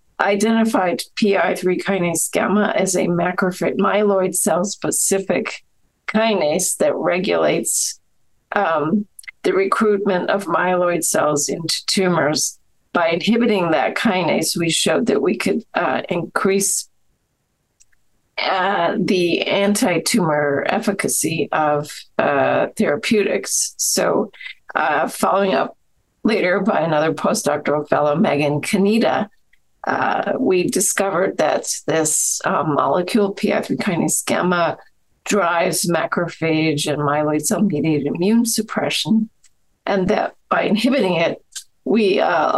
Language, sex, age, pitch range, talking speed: English, female, 50-69, 165-210 Hz, 105 wpm